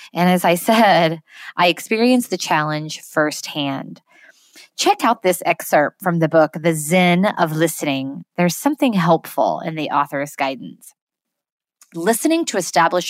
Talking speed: 135 wpm